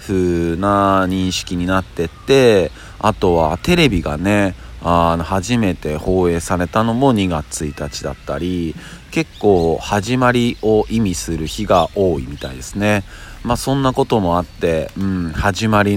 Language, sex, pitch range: Japanese, male, 85-110 Hz